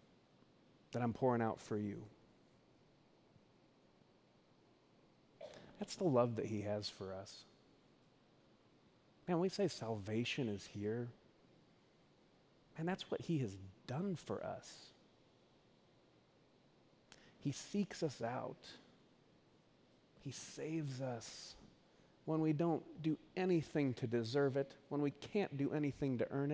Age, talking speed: 30-49, 115 wpm